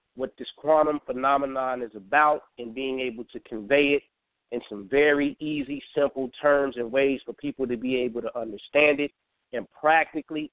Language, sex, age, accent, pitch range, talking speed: English, male, 30-49, American, 130-145 Hz, 170 wpm